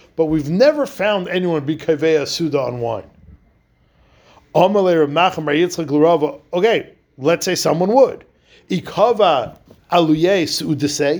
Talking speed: 80 wpm